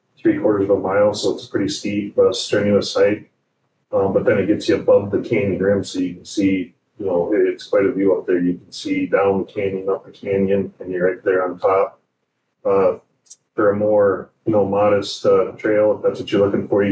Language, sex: English, male